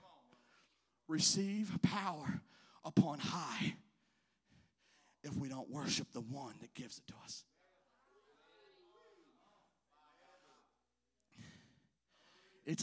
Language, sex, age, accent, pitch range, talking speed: English, male, 30-49, American, 190-255 Hz, 75 wpm